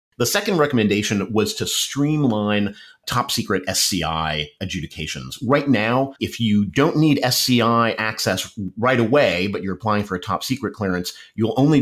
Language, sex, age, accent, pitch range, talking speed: English, male, 30-49, American, 95-125 Hz, 140 wpm